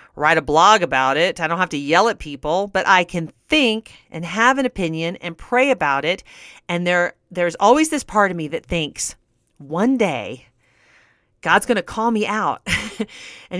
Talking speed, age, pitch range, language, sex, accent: 190 wpm, 40-59, 170-230 Hz, English, female, American